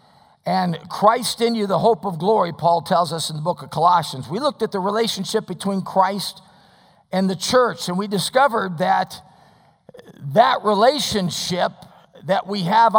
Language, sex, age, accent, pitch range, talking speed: English, male, 50-69, American, 170-220 Hz, 160 wpm